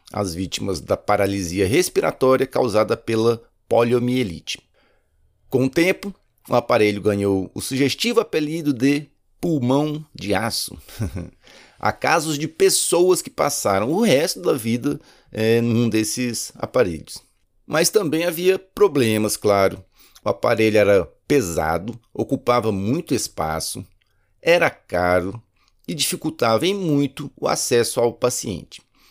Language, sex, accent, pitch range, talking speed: Portuguese, male, Brazilian, 105-150 Hz, 115 wpm